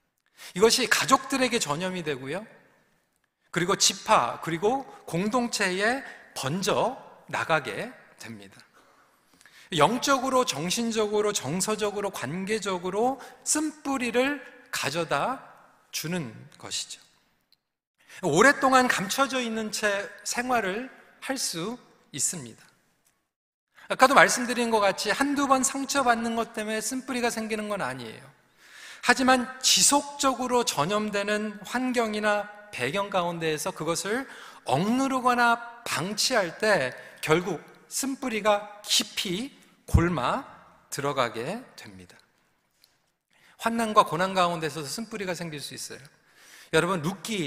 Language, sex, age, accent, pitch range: Korean, male, 40-59, native, 175-245 Hz